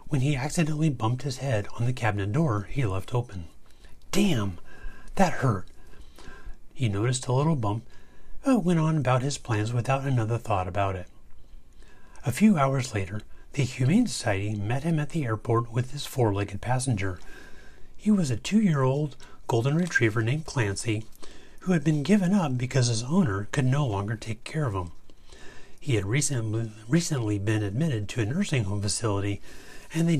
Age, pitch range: 40-59, 105-145 Hz